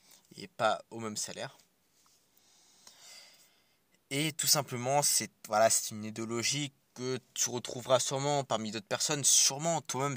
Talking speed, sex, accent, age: 130 wpm, male, French, 20-39